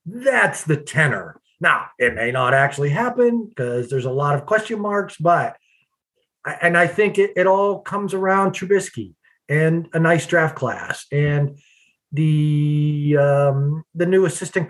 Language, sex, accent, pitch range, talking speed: English, male, American, 145-195 Hz, 150 wpm